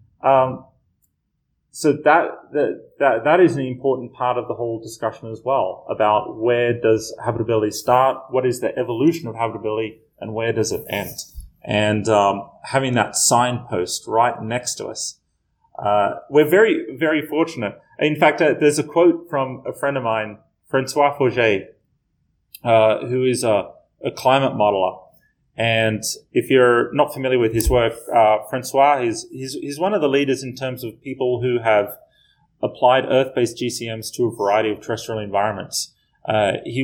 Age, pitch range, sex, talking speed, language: 30-49, 110-130 Hz, male, 165 wpm, English